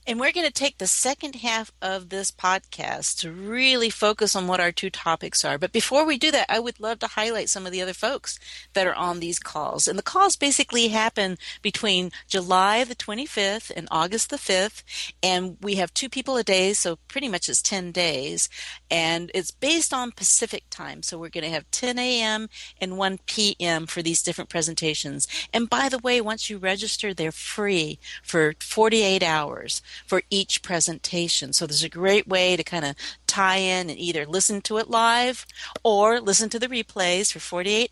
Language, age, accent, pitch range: English, 50-69, American, 175-225 Hz